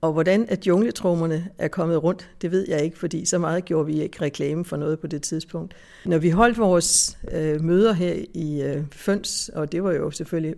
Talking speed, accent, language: 205 wpm, native, Danish